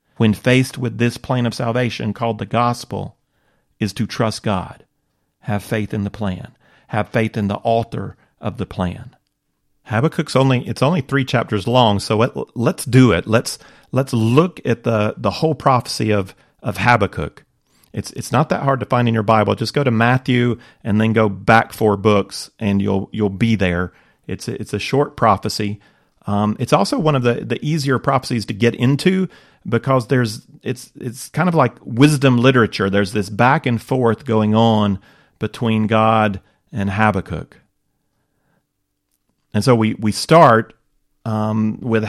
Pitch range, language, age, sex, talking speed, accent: 105-130 Hz, English, 40-59, male, 170 wpm, American